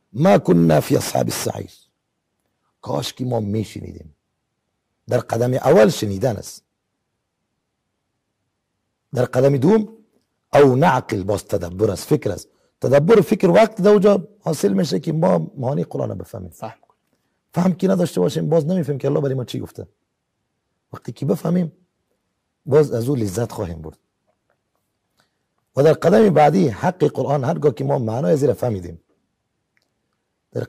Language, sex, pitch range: English, male, 105-175 Hz